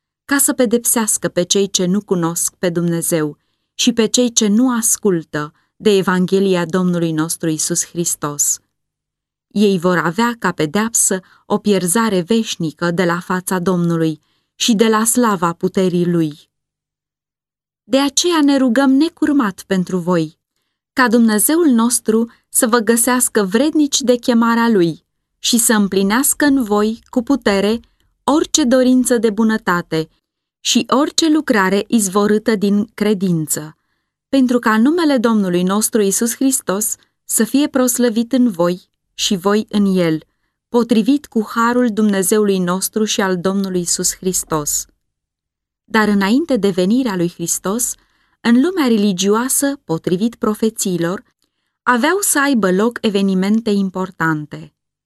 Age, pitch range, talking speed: 20-39, 175-245 Hz, 130 wpm